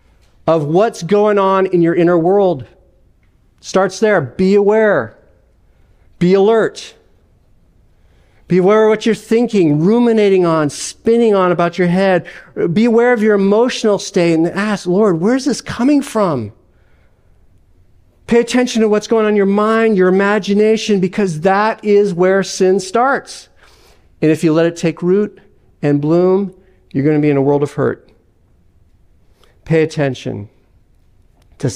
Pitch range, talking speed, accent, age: 125-195 Hz, 145 wpm, American, 50-69